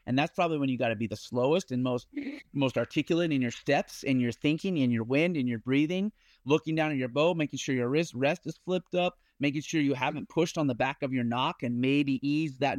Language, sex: English, male